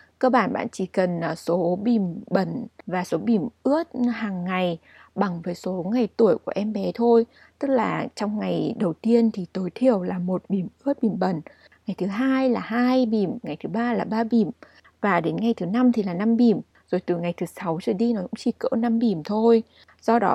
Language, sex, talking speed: Vietnamese, female, 220 wpm